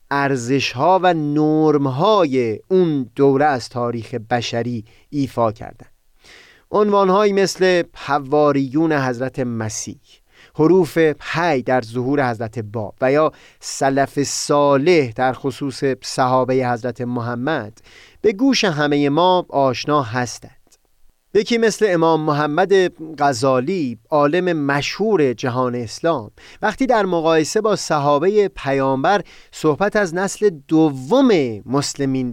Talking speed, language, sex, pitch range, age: 105 wpm, Persian, male, 130-180 Hz, 30-49